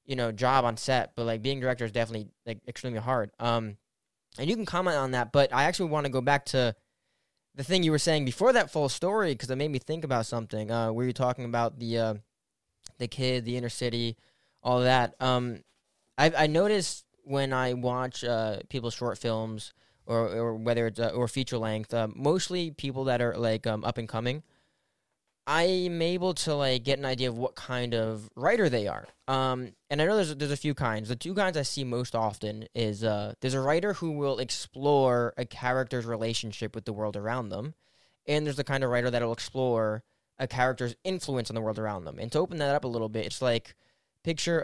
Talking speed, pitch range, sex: 220 wpm, 115-140 Hz, male